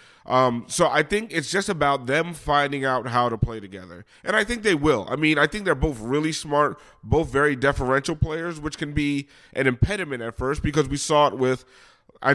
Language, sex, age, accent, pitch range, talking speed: English, male, 30-49, American, 125-155 Hz, 215 wpm